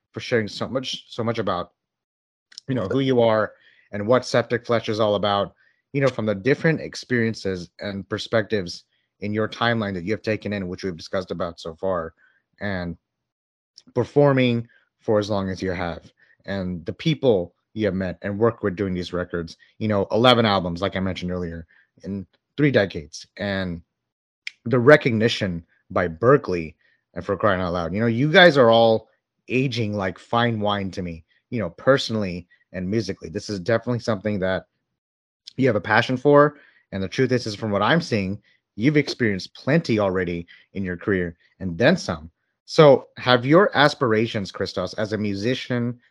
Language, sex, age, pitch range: English, male, 30-49, 95-120 Hz